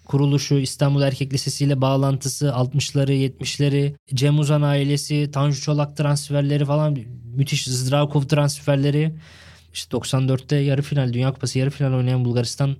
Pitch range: 125-155 Hz